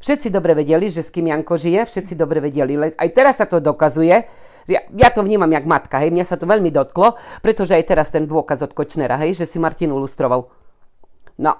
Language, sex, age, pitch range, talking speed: Slovak, female, 40-59, 155-200 Hz, 220 wpm